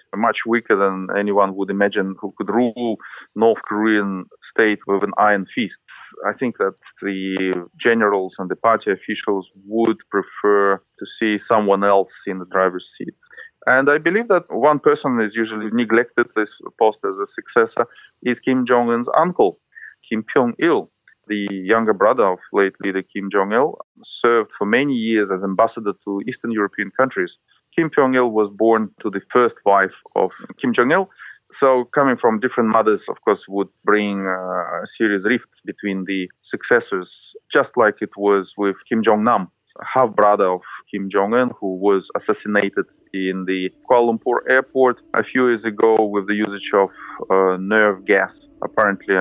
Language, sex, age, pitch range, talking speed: English, male, 30-49, 100-120 Hz, 160 wpm